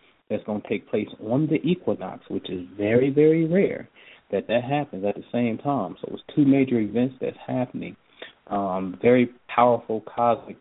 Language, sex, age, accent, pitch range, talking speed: English, male, 30-49, American, 105-130 Hz, 175 wpm